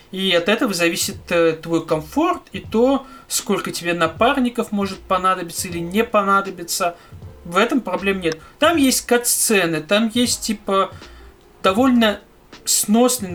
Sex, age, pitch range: male, 30-49, 170-220 Hz